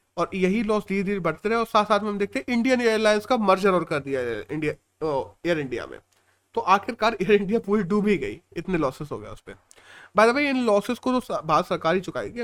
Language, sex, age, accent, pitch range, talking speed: Hindi, male, 30-49, native, 170-220 Hz, 235 wpm